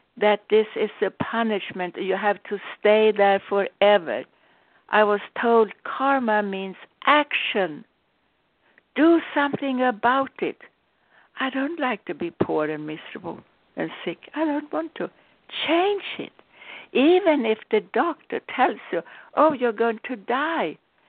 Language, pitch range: English, 185-270 Hz